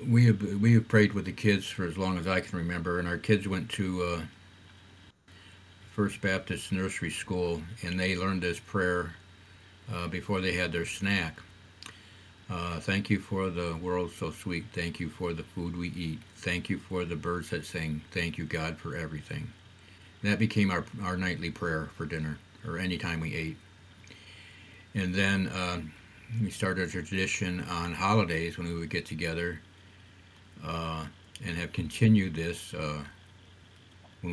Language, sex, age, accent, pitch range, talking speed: English, male, 50-69, American, 85-100 Hz, 170 wpm